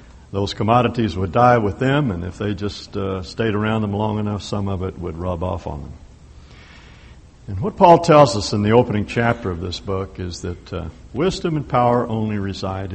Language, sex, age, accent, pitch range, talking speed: English, male, 60-79, American, 90-120 Hz, 205 wpm